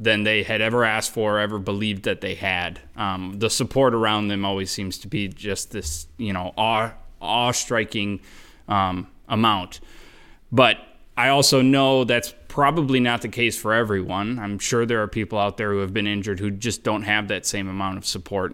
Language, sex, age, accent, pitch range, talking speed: English, male, 20-39, American, 100-120 Hz, 195 wpm